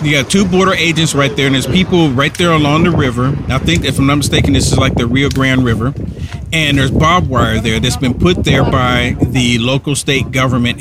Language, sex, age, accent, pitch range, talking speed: English, male, 50-69, American, 120-180 Hz, 235 wpm